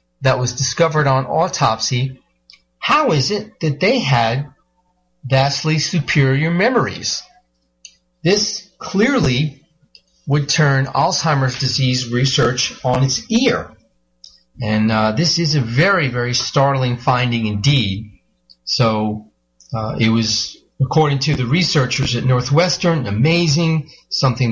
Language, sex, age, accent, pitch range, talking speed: English, male, 40-59, American, 115-155 Hz, 115 wpm